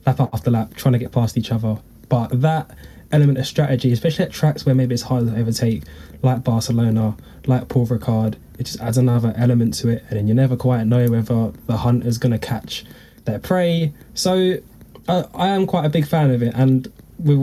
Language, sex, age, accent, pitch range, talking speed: English, male, 10-29, British, 110-130 Hz, 215 wpm